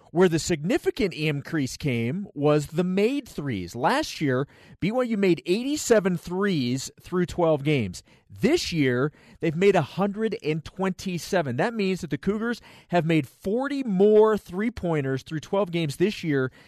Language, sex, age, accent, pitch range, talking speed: English, male, 40-59, American, 140-180 Hz, 135 wpm